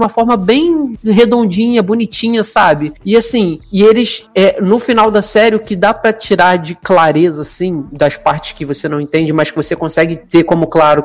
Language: Portuguese